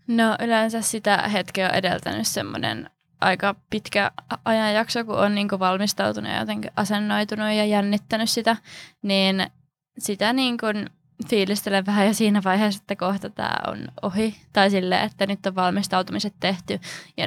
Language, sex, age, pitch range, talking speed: Finnish, female, 20-39, 175-210 Hz, 150 wpm